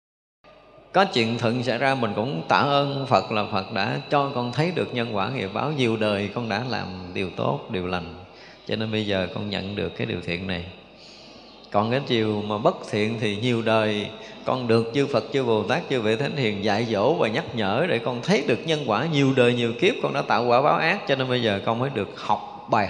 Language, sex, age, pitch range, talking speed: Vietnamese, male, 20-39, 105-130 Hz, 235 wpm